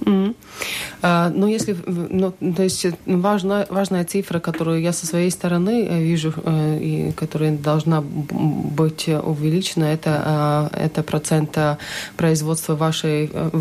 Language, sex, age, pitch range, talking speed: Russian, female, 30-49, 150-170 Hz, 115 wpm